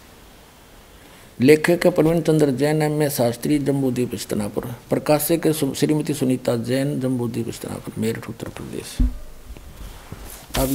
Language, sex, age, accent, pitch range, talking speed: Hindi, male, 60-79, native, 115-155 Hz, 110 wpm